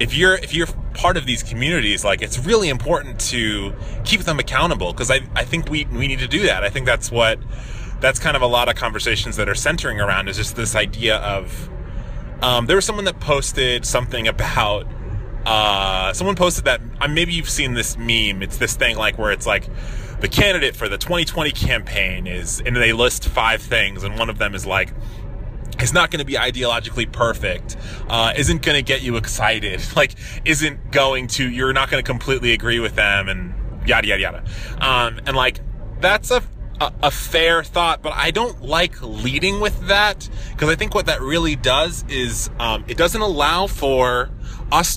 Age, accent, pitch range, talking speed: 20-39, American, 110-150 Hz, 195 wpm